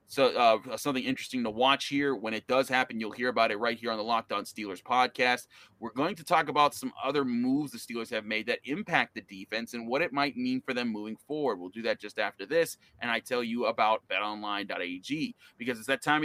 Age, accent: 30-49, American